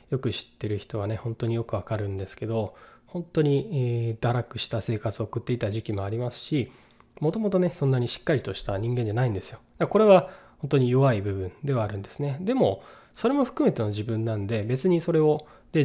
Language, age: Japanese, 20-39